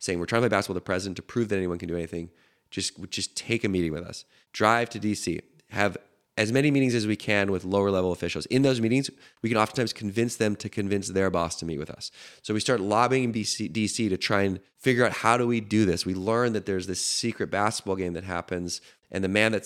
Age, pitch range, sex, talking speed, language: 20-39, 90-110 Hz, male, 250 wpm, English